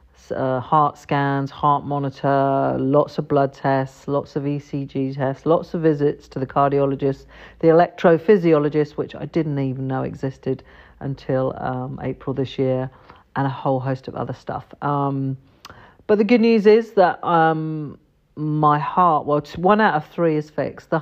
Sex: female